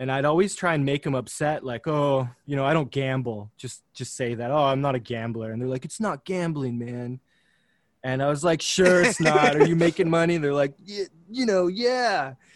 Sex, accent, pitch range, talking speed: male, American, 120-150 Hz, 230 wpm